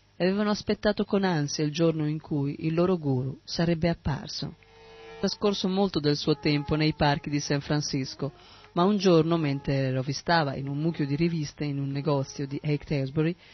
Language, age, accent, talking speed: Italian, 40-59, native, 180 wpm